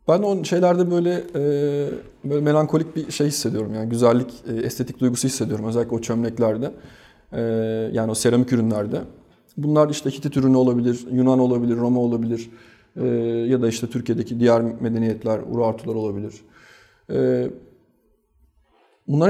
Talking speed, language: 135 wpm, Turkish